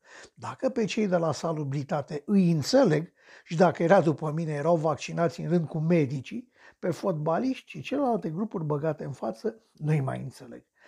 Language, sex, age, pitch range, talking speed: Romanian, male, 60-79, 150-200 Hz, 170 wpm